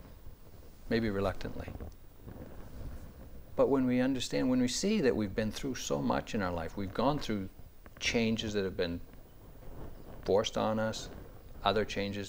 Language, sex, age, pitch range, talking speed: English, male, 60-79, 90-115 Hz, 145 wpm